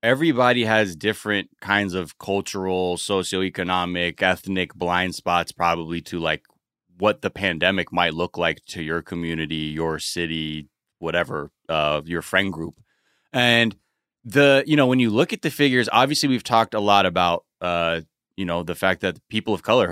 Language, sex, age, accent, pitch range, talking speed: English, male, 20-39, American, 85-115 Hz, 165 wpm